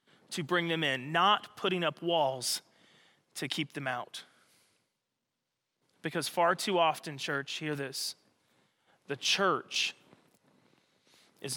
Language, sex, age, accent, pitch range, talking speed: English, male, 30-49, American, 145-175 Hz, 115 wpm